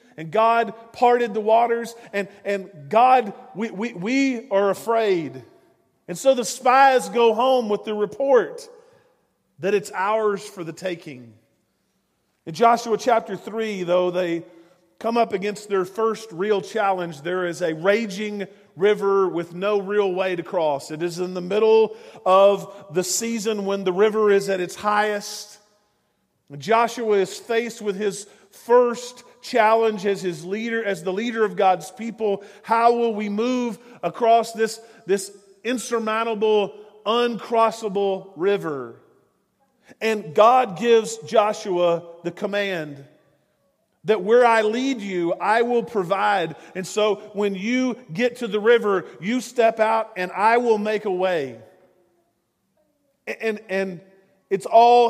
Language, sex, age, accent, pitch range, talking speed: English, male, 40-59, American, 190-230 Hz, 140 wpm